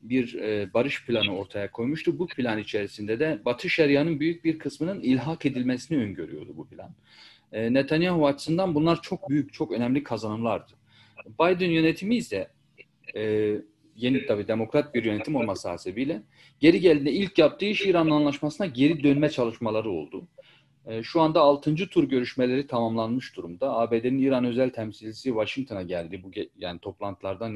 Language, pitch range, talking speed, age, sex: Turkish, 110-150 Hz, 140 wpm, 40-59, male